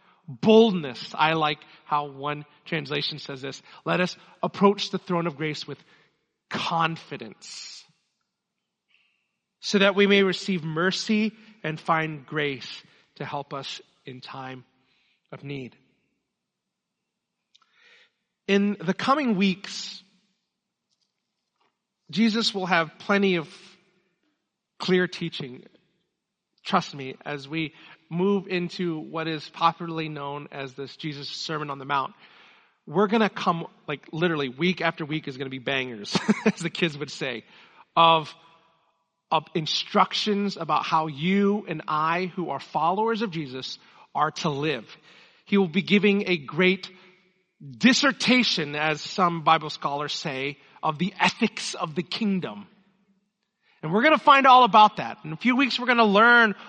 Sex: male